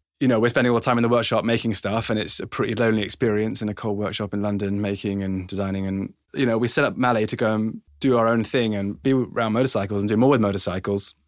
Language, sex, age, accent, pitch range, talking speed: English, male, 20-39, British, 100-120 Hz, 265 wpm